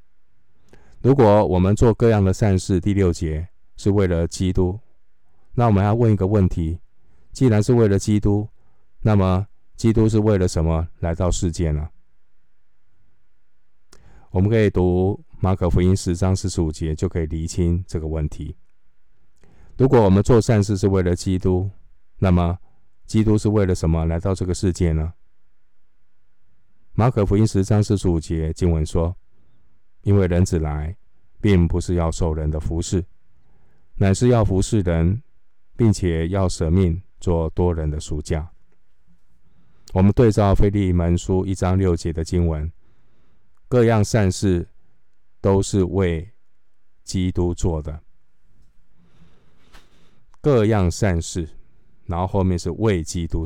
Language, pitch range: Chinese, 85-100 Hz